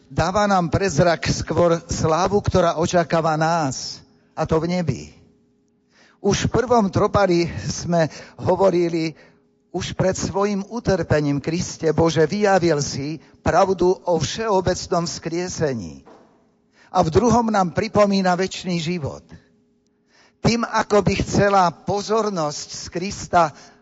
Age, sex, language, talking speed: 50-69, male, Slovak, 110 wpm